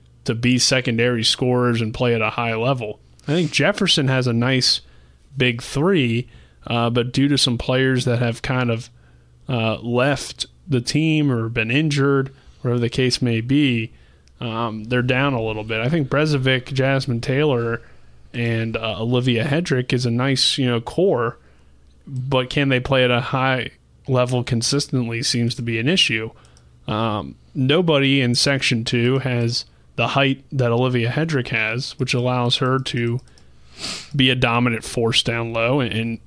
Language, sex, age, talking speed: English, male, 30-49, 160 wpm